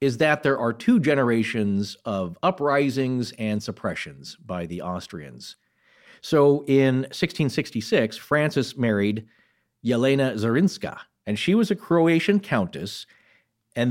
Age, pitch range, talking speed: 40-59, 115-140 Hz, 115 wpm